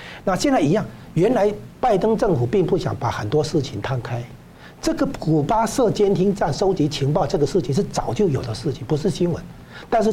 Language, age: Chinese, 60-79